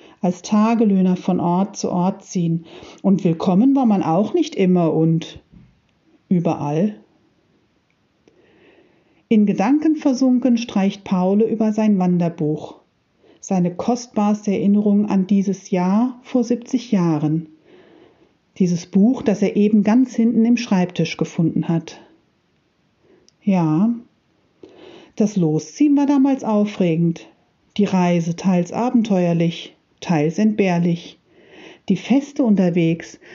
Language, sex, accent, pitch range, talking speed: German, female, German, 170-230 Hz, 105 wpm